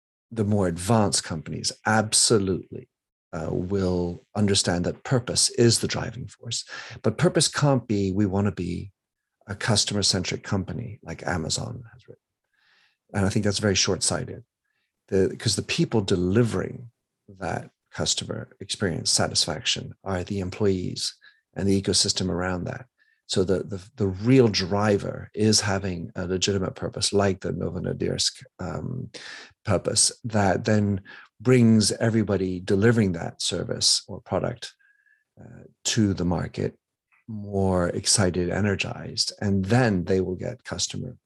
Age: 50-69